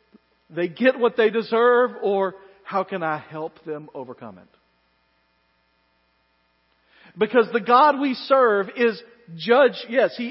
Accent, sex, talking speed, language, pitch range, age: American, male, 130 wpm, English, 155-240 Hz, 40-59